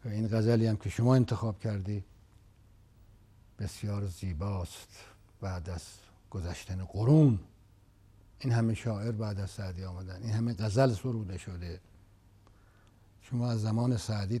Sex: male